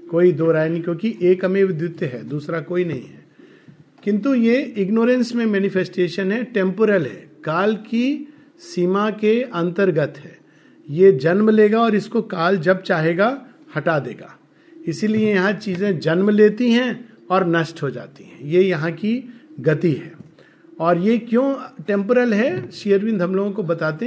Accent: native